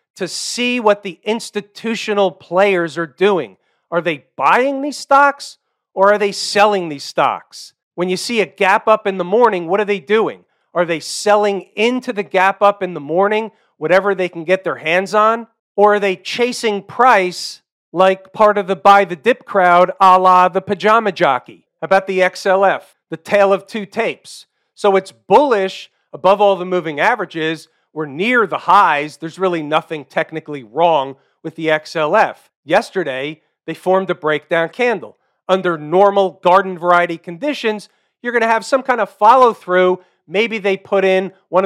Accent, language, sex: American, English, male